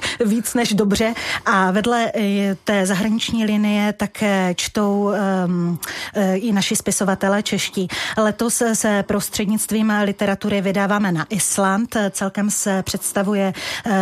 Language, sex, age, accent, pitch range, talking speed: Czech, female, 30-49, native, 195-215 Hz, 105 wpm